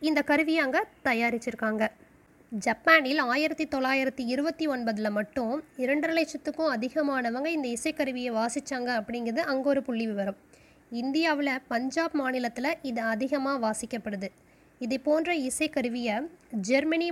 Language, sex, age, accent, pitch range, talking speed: Tamil, female, 20-39, native, 250-310 Hz, 105 wpm